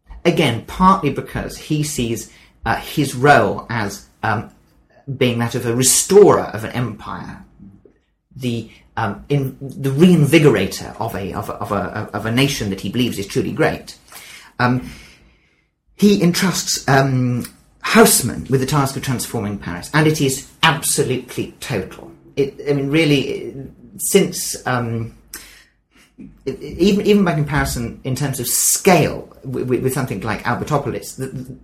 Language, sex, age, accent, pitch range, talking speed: English, male, 40-59, British, 110-145 Hz, 150 wpm